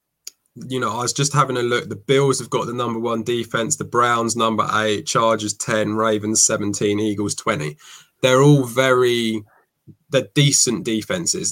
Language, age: English, 20-39